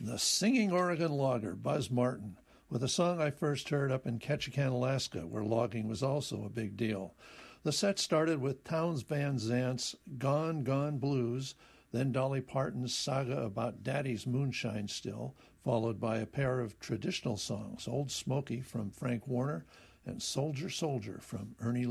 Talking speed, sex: 160 wpm, male